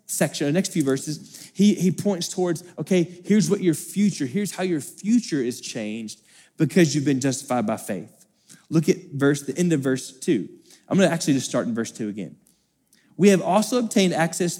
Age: 20-39